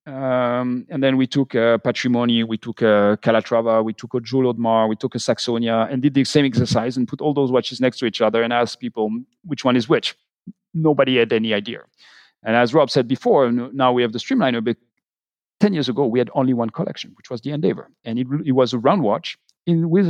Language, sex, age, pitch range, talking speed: English, male, 40-59, 115-140 Hz, 225 wpm